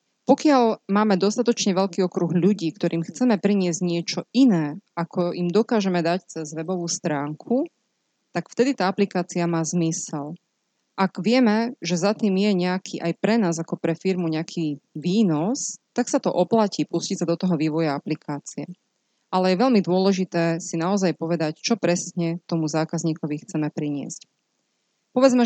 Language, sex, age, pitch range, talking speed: Slovak, female, 20-39, 165-210 Hz, 150 wpm